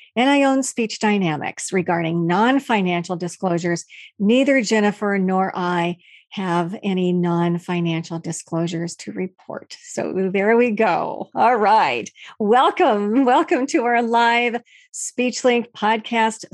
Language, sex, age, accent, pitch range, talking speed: English, female, 50-69, American, 185-230 Hz, 115 wpm